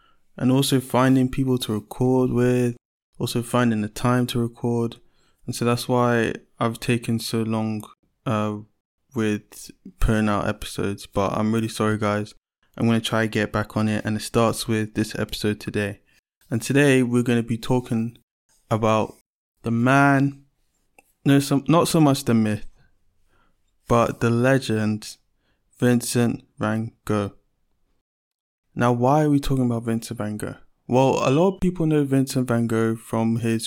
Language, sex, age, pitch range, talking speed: English, male, 20-39, 110-125 Hz, 160 wpm